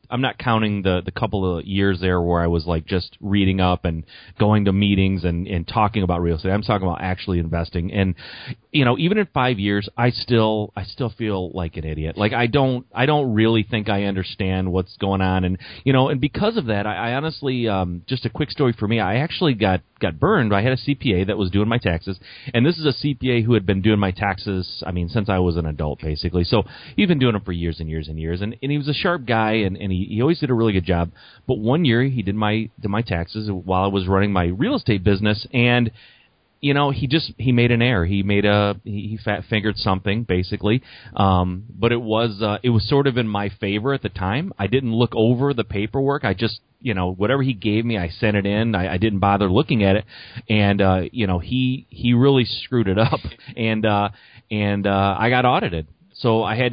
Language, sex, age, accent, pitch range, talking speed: English, male, 30-49, American, 95-120 Hz, 245 wpm